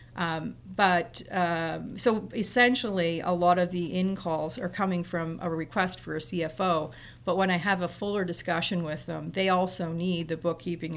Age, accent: 40-59, American